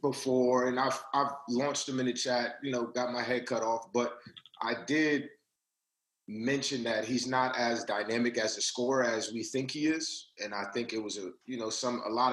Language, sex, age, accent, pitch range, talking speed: English, male, 30-49, American, 110-125 Hz, 215 wpm